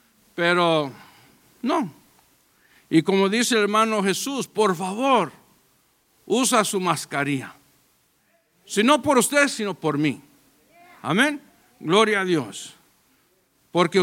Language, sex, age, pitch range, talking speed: English, male, 60-79, 175-240 Hz, 105 wpm